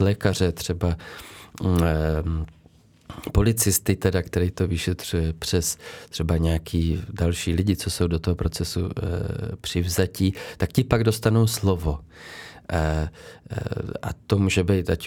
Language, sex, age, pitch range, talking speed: Czech, male, 30-49, 85-105 Hz, 125 wpm